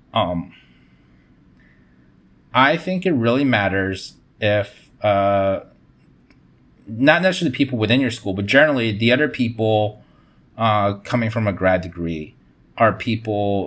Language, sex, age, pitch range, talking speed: English, male, 30-49, 100-130 Hz, 125 wpm